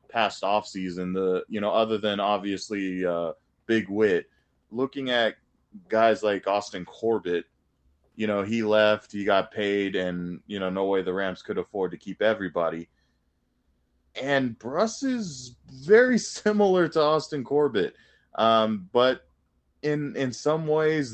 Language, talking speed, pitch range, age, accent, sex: English, 140 wpm, 95-125 Hz, 20-39, American, male